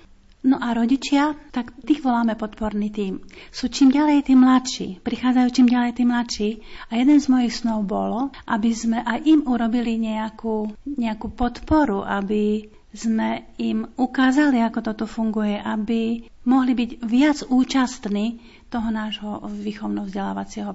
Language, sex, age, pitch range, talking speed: Slovak, female, 40-59, 215-255 Hz, 135 wpm